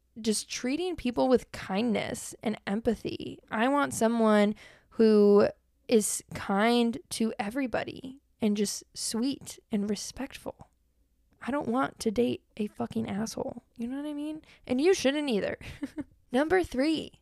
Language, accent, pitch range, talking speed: English, American, 205-255 Hz, 135 wpm